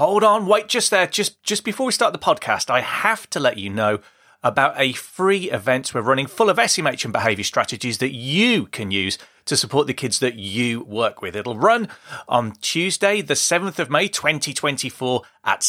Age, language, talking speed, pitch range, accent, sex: 30-49, English, 200 wpm, 125-185 Hz, British, male